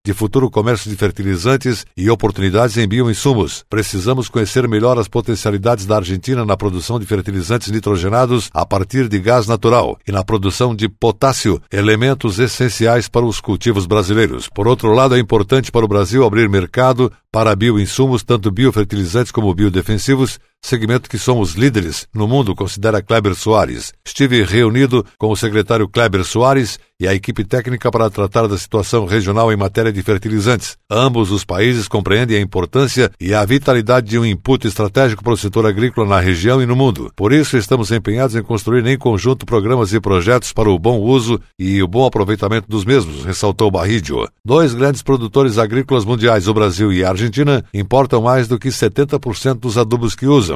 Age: 60-79